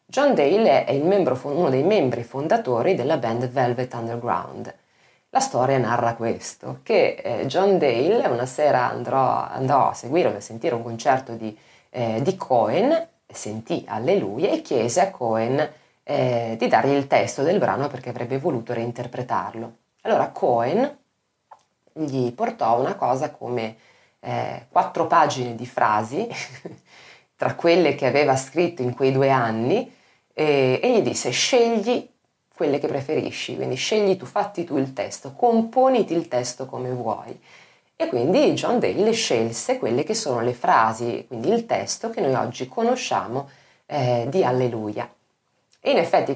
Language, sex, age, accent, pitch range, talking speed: Italian, female, 30-49, native, 120-170 Hz, 150 wpm